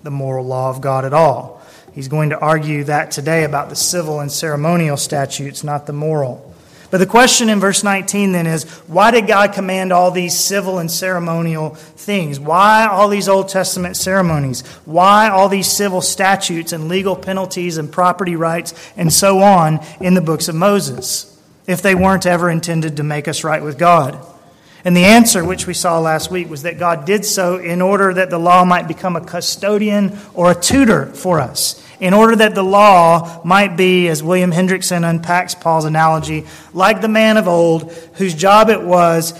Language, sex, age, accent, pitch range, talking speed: English, male, 30-49, American, 160-190 Hz, 190 wpm